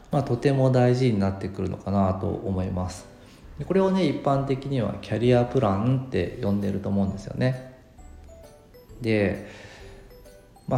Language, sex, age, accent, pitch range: Japanese, male, 40-59, native, 100-130 Hz